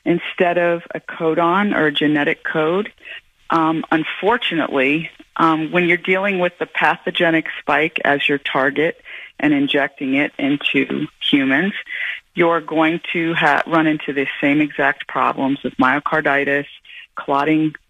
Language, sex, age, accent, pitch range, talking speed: English, female, 40-59, American, 145-185 Hz, 130 wpm